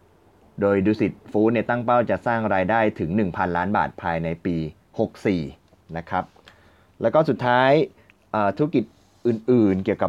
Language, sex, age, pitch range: Thai, male, 20-39, 90-115 Hz